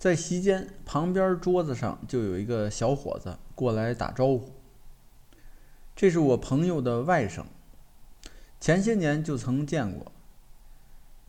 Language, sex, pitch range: Chinese, male, 125-160 Hz